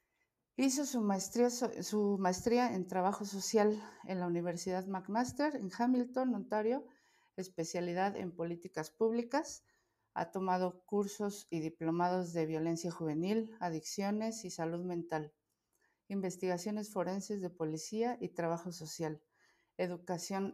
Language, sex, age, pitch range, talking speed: Spanish, female, 50-69, 165-225 Hz, 110 wpm